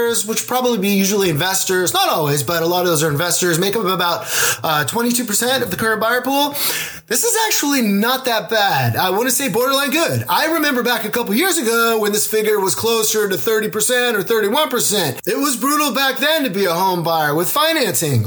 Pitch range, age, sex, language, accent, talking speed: 180-255 Hz, 30-49, male, English, American, 210 wpm